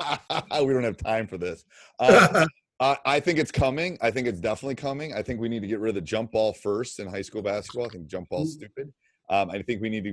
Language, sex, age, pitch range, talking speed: English, male, 30-49, 95-125 Hz, 255 wpm